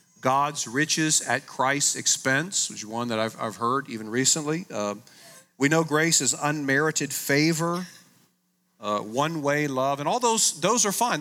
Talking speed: 160 wpm